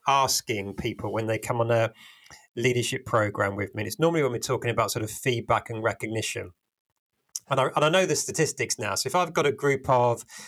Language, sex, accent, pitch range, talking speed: English, male, British, 115-165 Hz, 220 wpm